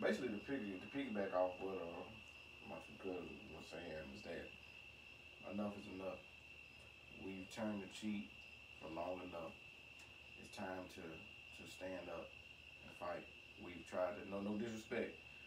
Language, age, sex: English, 20-39, male